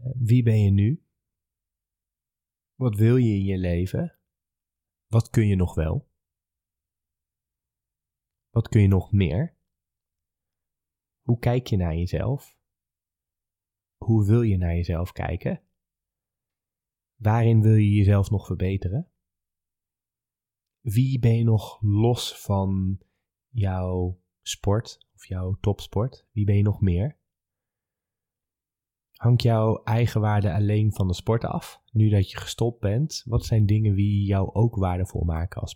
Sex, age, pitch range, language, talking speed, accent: male, 20-39, 90-115 Hz, Dutch, 130 wpm, Dutch